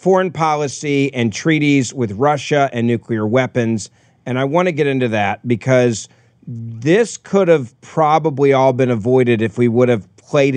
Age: 40-59